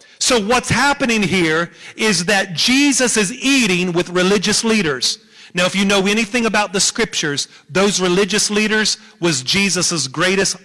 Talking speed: 145 wpm